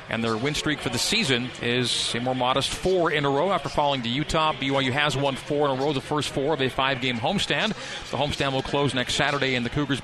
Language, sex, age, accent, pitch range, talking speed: English, male, 40-59, American, 130-155 Hz, 250 wpm